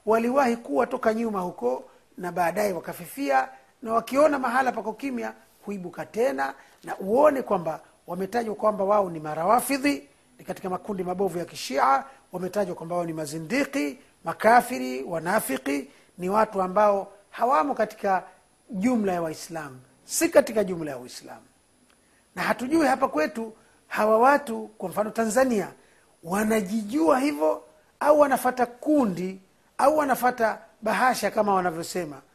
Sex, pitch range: male, 180-245 Hz